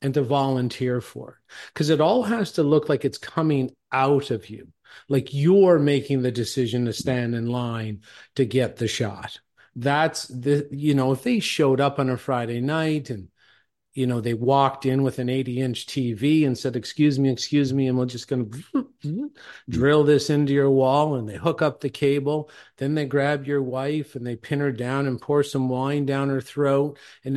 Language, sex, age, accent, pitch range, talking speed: English, male, 40-59, American, 125-145 Hz, 200 wpm